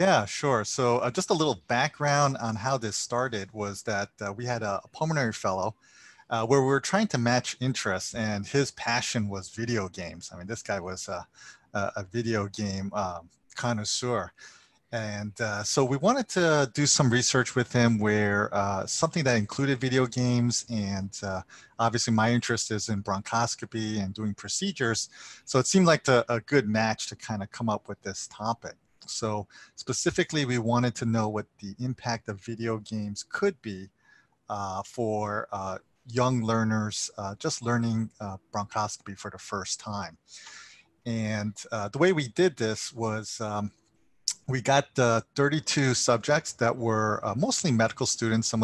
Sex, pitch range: male, 105-130 Hz